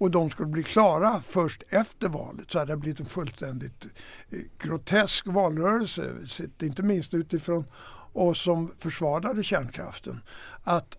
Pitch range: 160-195 Hz